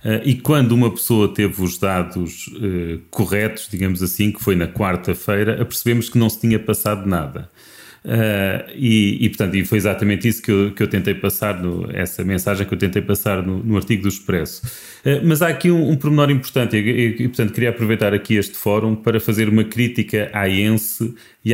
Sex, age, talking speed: male, 30-49, 180 wpm